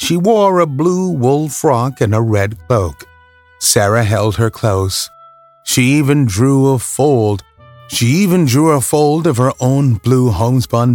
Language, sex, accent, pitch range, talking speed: English, male, American, 110-150 Hz, 160 wpm